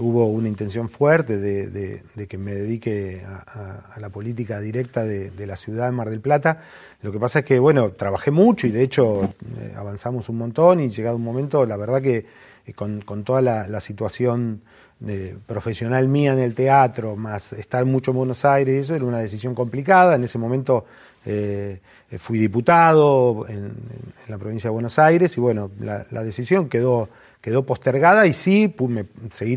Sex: male